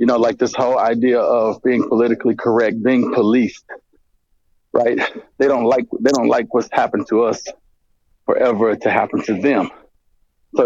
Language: English